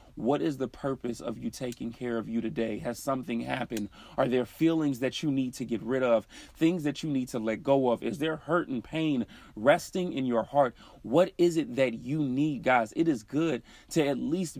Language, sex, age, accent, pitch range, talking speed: English, male, 30-49, American, 125-175 Hz, 220 wpm